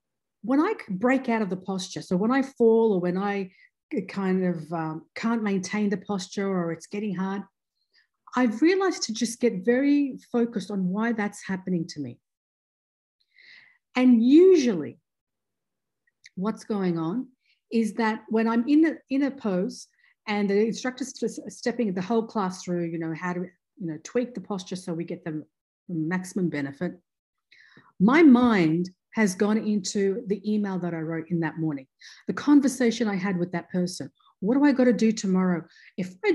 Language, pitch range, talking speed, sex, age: English, 185-240 Hz, 175 wpm, female, 50-69